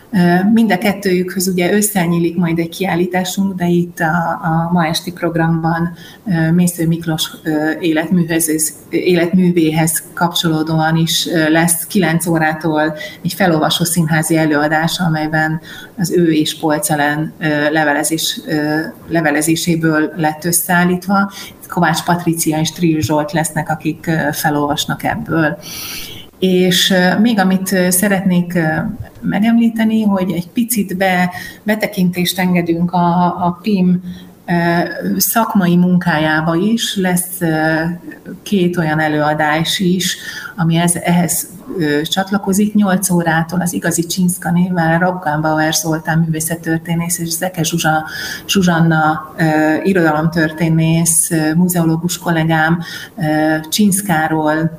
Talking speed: 95 wpm